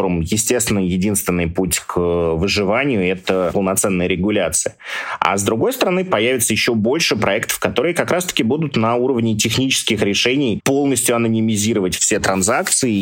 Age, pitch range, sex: 30-49, 100-125 Hz, male